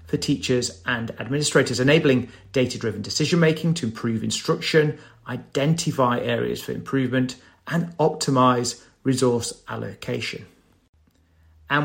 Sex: male